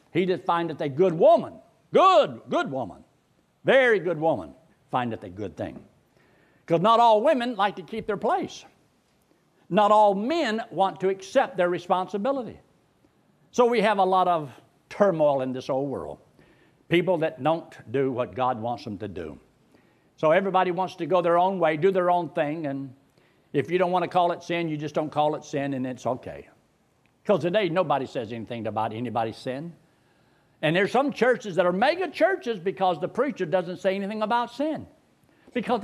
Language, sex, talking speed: English, male, 185 wpm